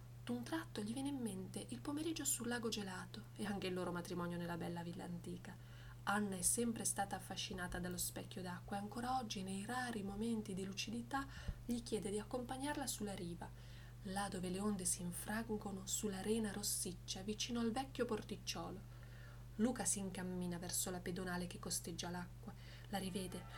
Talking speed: 165 wpm